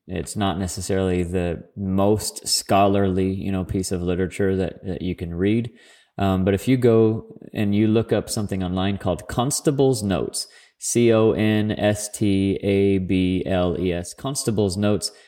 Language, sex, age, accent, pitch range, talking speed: English, male, 30-49, American, 95-115 Hz, 130 wpm